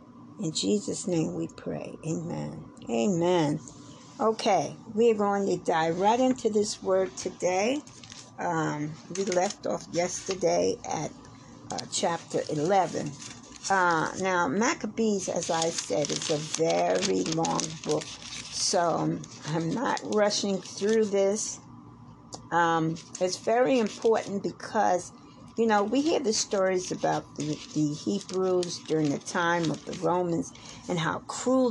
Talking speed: 130 wpm